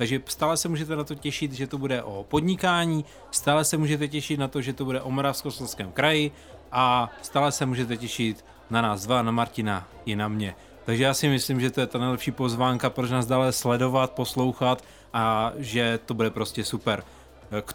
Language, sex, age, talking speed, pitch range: Czech, male, 30-49, 200 wpm, 120-165 Hz